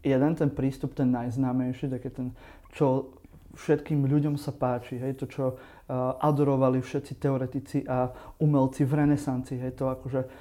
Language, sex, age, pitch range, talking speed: Slovak, male, 30-49, 130-150 Hz, 155 wpm